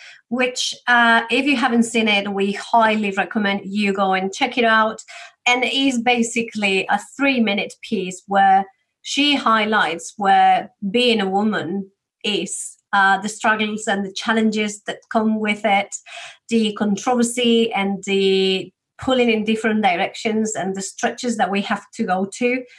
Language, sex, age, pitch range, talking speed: English, female, 30-49, 195-235 Hz, 155 wpm